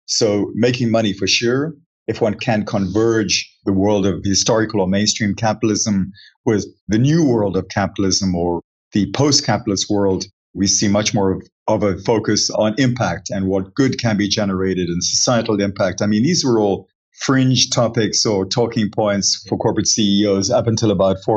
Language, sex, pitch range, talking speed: English, male, 95-115 Hz, 175 wpm